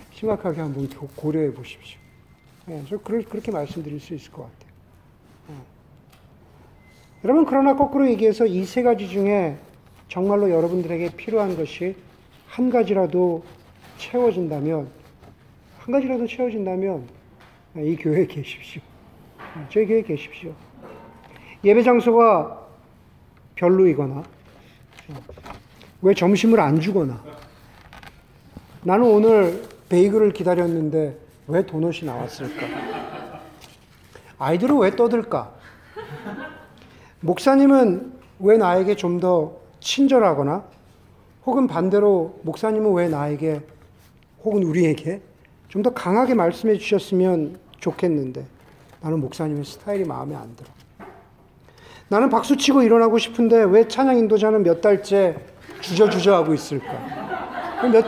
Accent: native